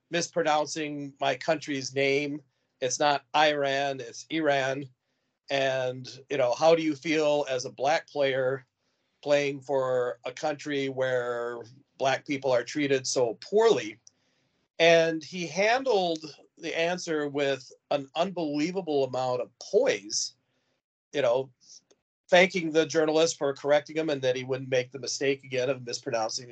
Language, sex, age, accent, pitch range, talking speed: English, male, 40-59, American, 130-165 Hz, 135 wpm